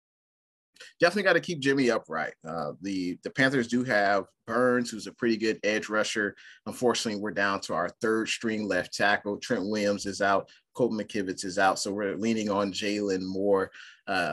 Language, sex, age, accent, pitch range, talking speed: English, male, 30-49, American, 100-115 Hz, 180 wpm